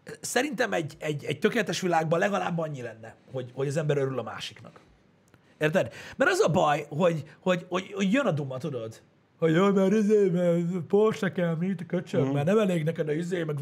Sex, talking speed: male, 200 wpm